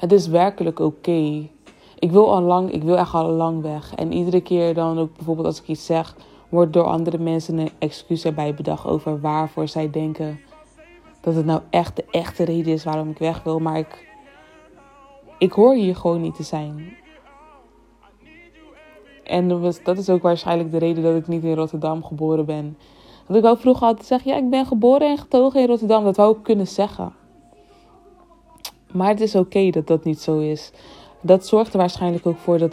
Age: 20-39